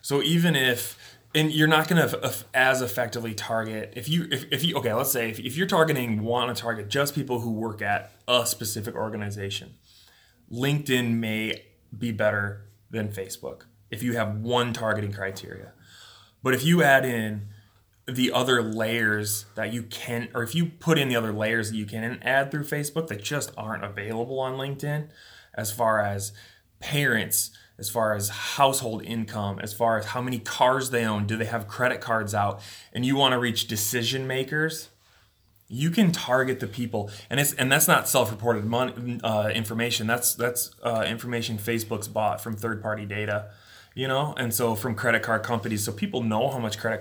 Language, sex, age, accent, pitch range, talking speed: English, male, 20-39, American, 105-125 Hz, 185 wpm